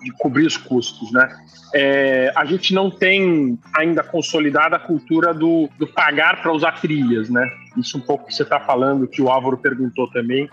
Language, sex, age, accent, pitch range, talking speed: English, male, 40-59, Brazilian, 135-180 Hz, 190 wpm